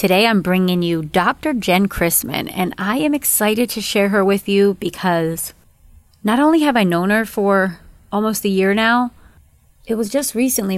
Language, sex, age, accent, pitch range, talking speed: English, female, 30-49, American, 175-225 Hz, 180 wpm